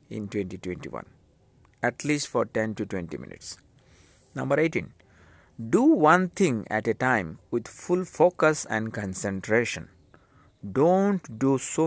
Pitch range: 100-135 Hz